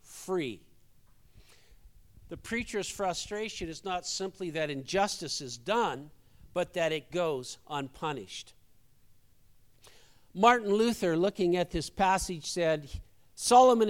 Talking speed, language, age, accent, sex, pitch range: 105 wpm, English, 50-69, American, male, 140-195 Hz